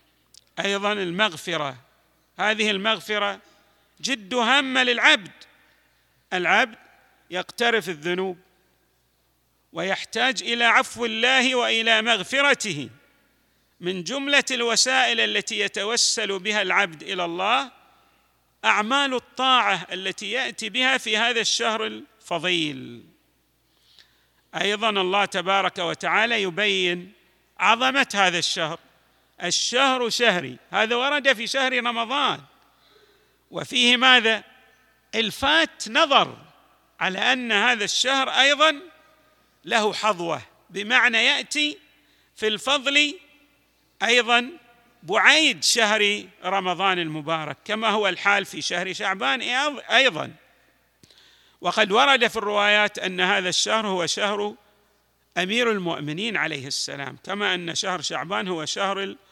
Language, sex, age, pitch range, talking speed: Arabic, male, 40-59, 185-250 Hz, 95 wpm